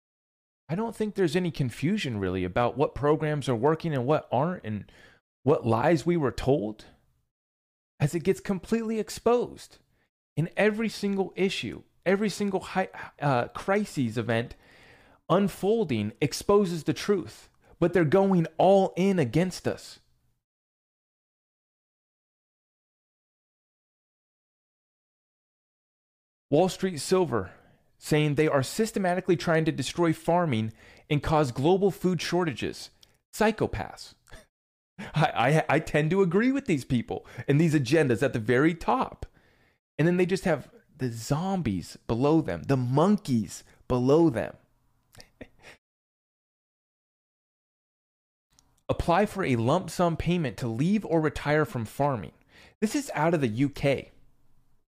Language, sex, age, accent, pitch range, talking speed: English, male, 30-49, American, 130-185 Hz, 120 wpm